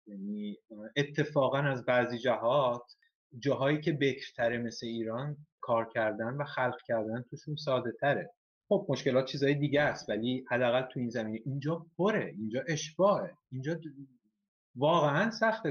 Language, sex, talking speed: Persian, male, 130 wpm